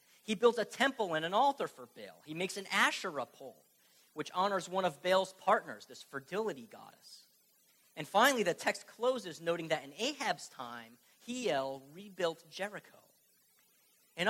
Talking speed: 155 wpm